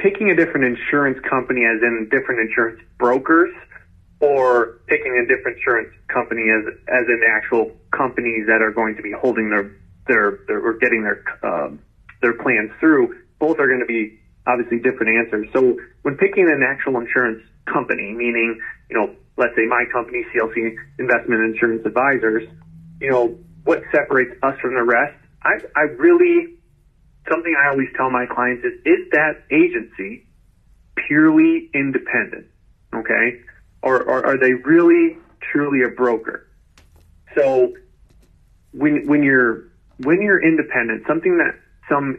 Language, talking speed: English, 150 wpm